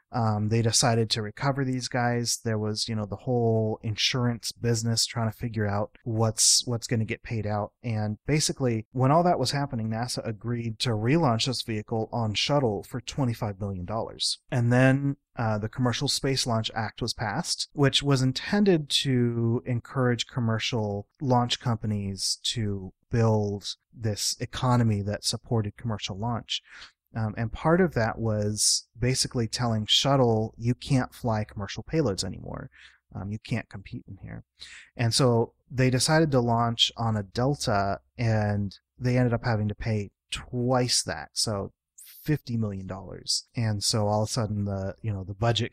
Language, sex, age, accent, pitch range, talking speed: English, male, 30-49, American, 105-125 Hz, 165 wpm